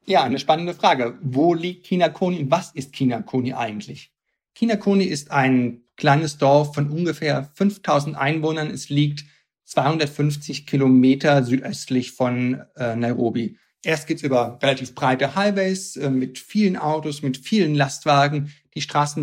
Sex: male